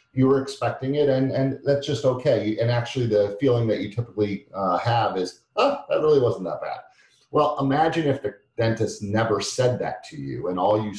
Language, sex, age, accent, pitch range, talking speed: English, male, 40-59, American, 105-140 Hz, 205 wpm